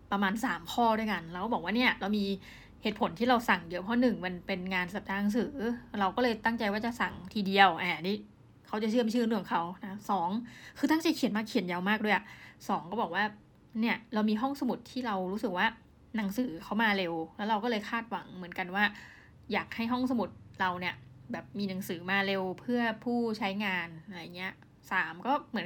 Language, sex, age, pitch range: Thai, female, 20-39, 195-235 Hz